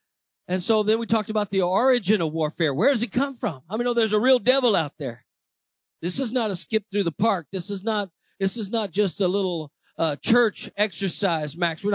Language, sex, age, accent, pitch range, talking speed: English, male, 50-69, American, 155-200 Hz, 230 wpm